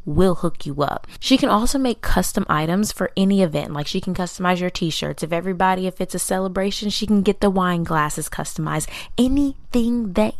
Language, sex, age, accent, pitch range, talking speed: English, female, 20-39, American, 175-225 Hz, 195 wpm